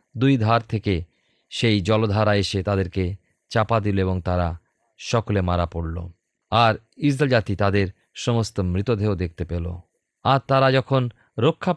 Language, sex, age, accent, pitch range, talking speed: Bengali, male, 40-59, native, 95-125 Hz, 135 wpm